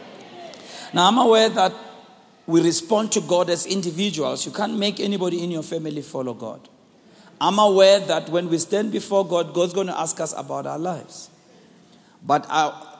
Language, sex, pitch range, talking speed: English, male, 155-210 Hz, 170 wpm